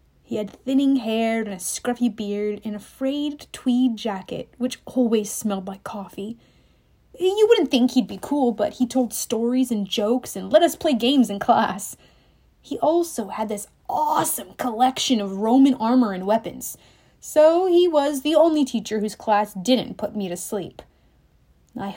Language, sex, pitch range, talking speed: English, female, 215-285 Hz, 170 wpm